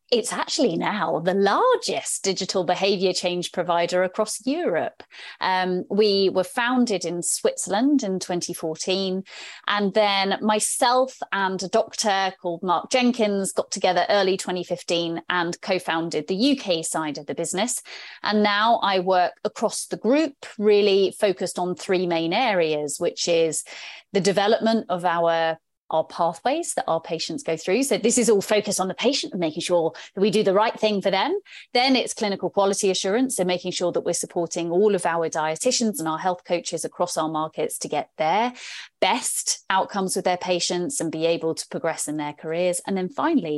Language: English